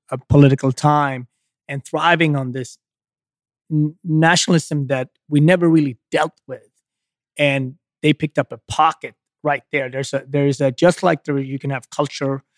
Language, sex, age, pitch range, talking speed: English, male, 30-49, 135-155 Hz, 160 wpm